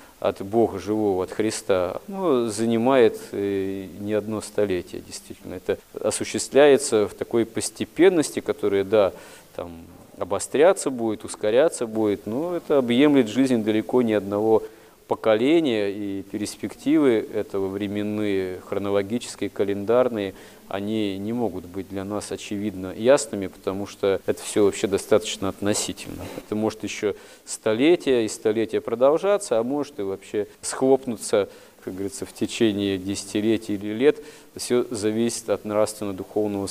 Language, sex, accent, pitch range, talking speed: Russian, male, native, 100-130 Hz, 125 wpm